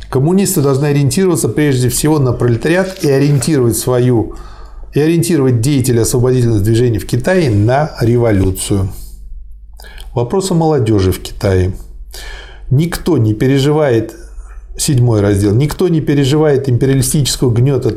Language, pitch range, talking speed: Russian, 110-145 Hz, 105 wpm